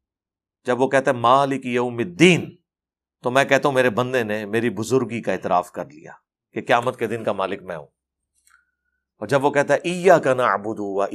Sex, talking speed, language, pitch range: male, 180 wpm, Urdu, 115-185 Hz